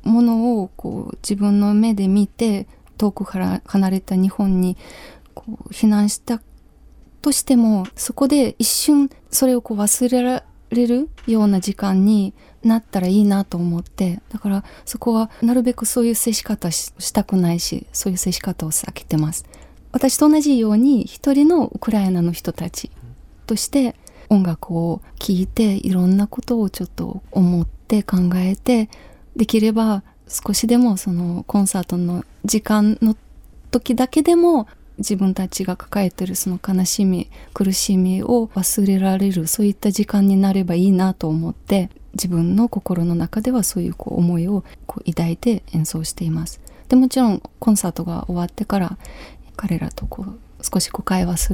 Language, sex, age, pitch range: Japanese, female, 20-39, 180-225 Hz